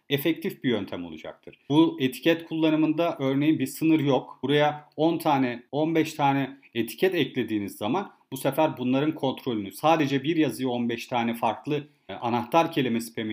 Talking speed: 150 wpm